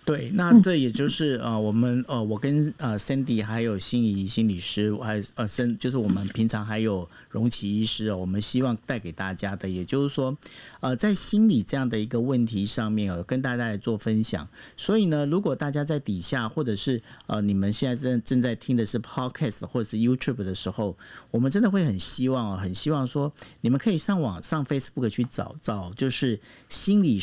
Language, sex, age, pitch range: Chinese, male, 50-69, 105-145 Hz